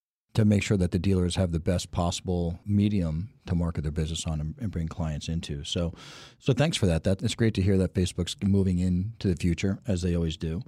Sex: male